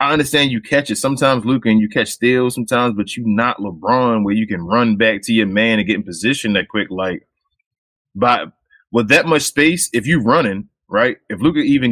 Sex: male